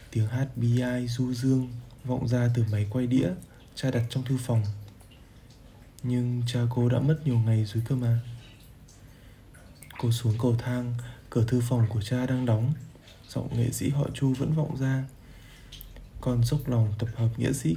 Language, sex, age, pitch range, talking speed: Vietnamese, male, 20-39, 110-130 Hz, 180 wpm